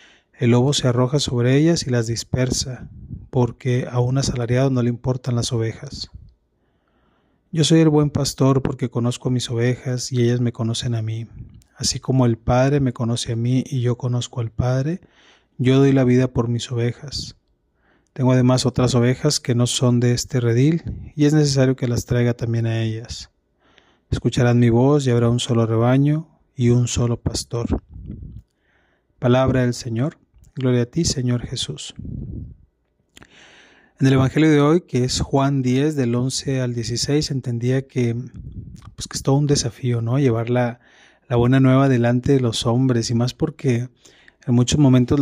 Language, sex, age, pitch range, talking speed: Spanish, male, 30-49, 120-135 Hz, 170 wpm